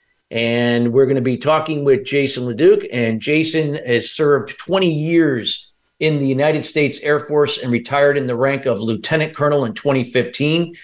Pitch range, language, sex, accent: 125-155 Hz, English, male, American